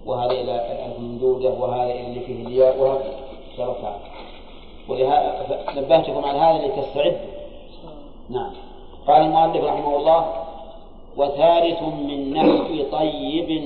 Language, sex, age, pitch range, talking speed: Arabic, male, 40-59, 130-170 Hz, 105 wpm